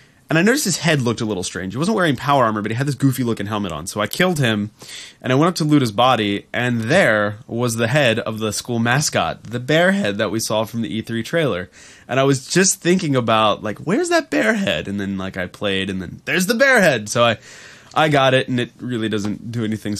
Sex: male